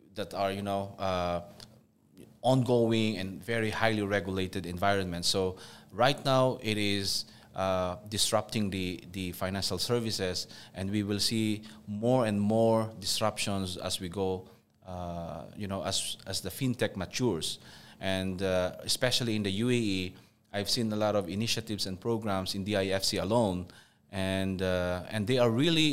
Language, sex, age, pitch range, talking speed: English, male, 20-39, 95-110 Hz, 150 wpm